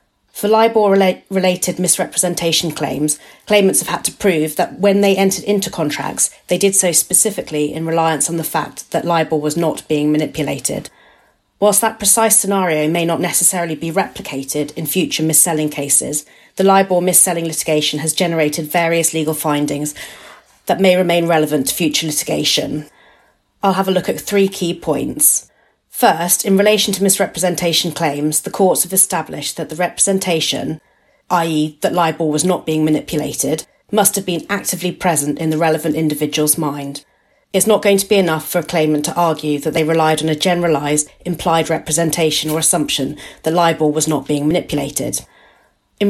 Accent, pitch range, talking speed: British, 155-190 Hz, 165 wpm